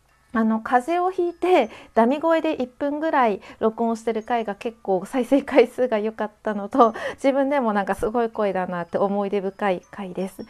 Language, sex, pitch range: Japanese, female, 215-275 Hz